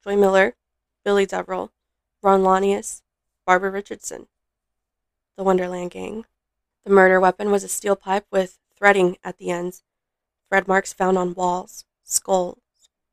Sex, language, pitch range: female, English, 185-205 Hz